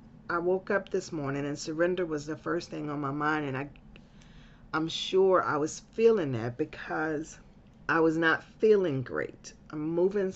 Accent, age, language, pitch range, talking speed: American, 40-59, English, 150-180 Hz, 180 wpm